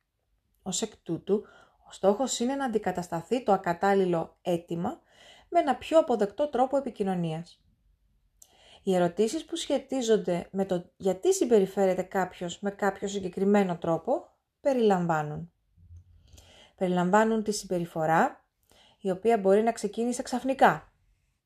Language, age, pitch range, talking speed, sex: Greek, 30-49, 185-230 Hz, 110 wpm, female